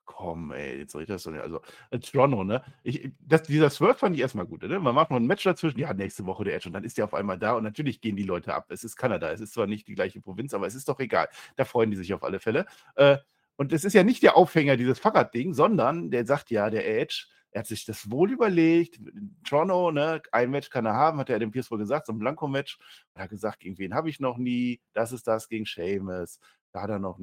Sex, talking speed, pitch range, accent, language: male, 270 wpm, 110-150 Hz, German, German